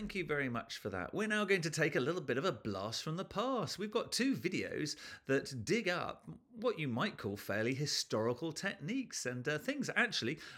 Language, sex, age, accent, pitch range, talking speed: English, male, 40-59, British, 110-170 Hz, 215 wpm